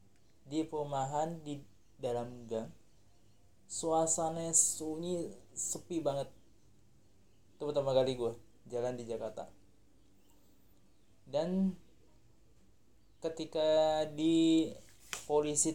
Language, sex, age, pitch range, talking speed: Indonesian, male, 20-39, 110-155 Hz, 70 wpm